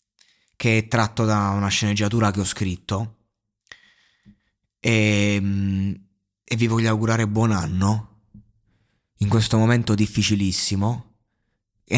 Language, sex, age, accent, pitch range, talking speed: Italian, male, 30-49, native, 100-115 Hz, 105 wpm